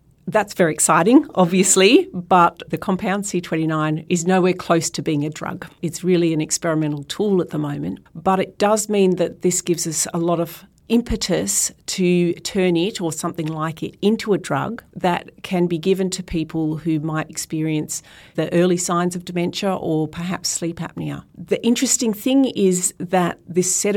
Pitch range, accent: 160-190 Hz, Australian